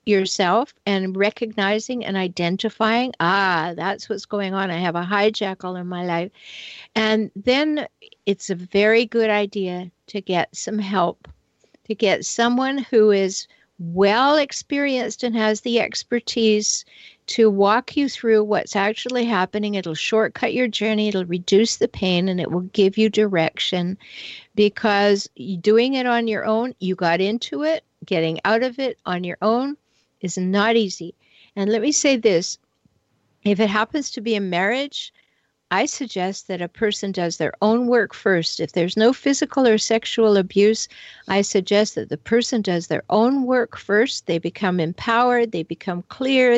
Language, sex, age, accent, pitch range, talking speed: English, female, 50-69, American, 190-240 Hz, 160 wpm